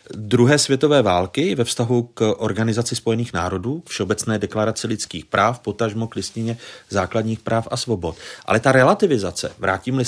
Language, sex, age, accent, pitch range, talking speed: Czech, male, 40-59, native, 100-120 Hz, 150 wpm